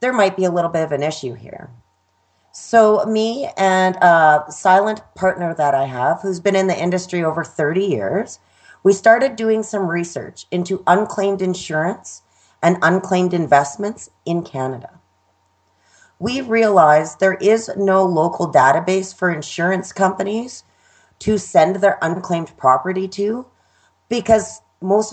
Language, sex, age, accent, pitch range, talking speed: English, female, 30-49, American, 150-200 Hz, 140 wpm